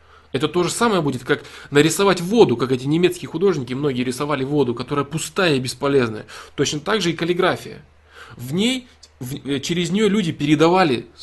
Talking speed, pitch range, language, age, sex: 160 wpm, 130-175 Hz, Russian, 20-39, male